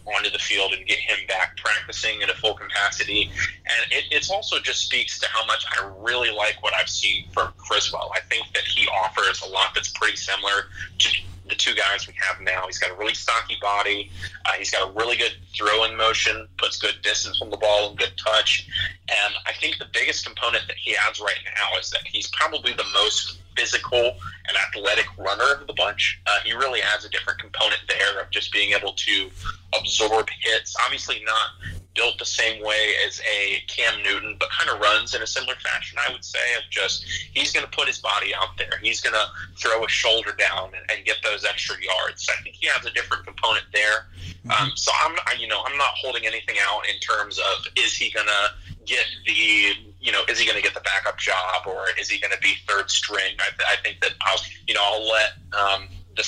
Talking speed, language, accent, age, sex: 225 wpm, English, American, 30-49, male